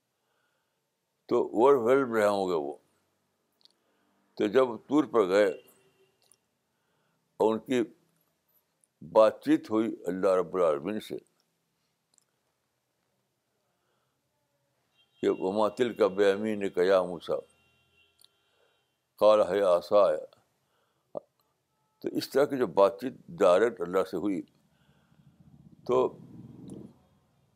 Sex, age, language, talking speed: male, 60-79, Urdu, 90 wpm